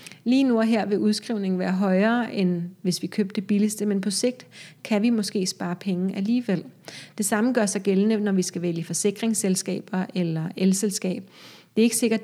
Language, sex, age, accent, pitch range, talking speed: Danish, female, 30-49, native, 190-215 Hz, 190 wpm